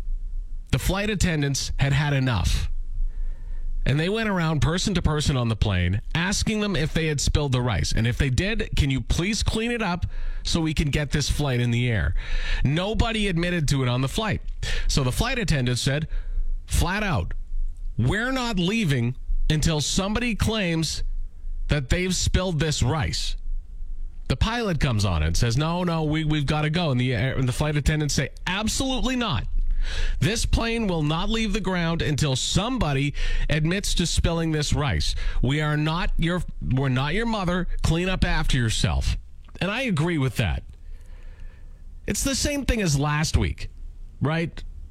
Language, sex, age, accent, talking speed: English, male, 40-59, American, 175 wpm